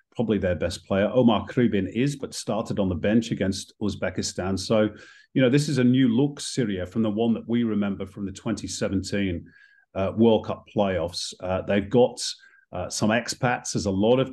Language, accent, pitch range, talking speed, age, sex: English, British, 95-115 Hz, 195 wpm, 40-59, male